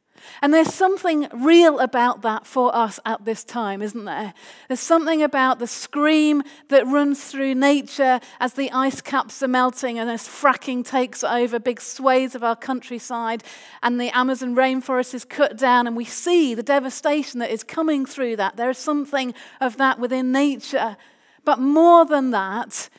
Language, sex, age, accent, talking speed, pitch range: English, female, 40-59, British, 170 wpm, 235-280 Hz